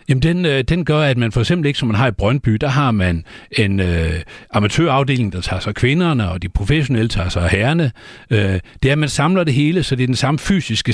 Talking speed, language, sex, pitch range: 240 wpm, Danish, male, 100-130 Hz